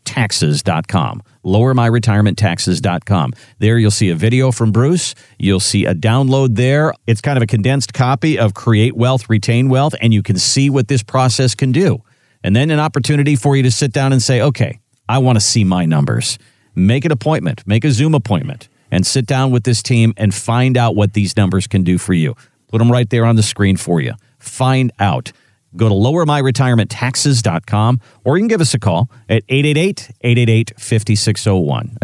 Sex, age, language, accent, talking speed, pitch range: male, 50-69, English, American, 180 wpm, 110-140 Hz